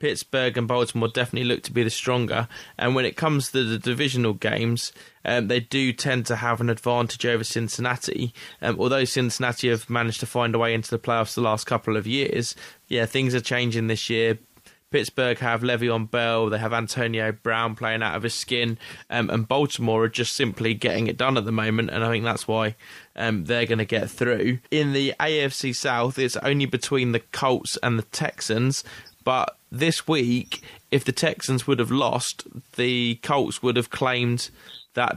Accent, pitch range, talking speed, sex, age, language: British, 115-125 Hz, 195 wpm, male, 20-39, English